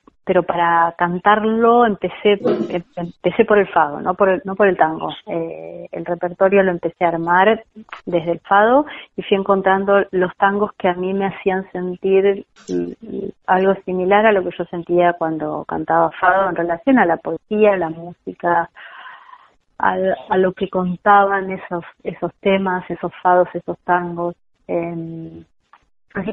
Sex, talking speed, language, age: female, 155 wpm, Spanish, 30-49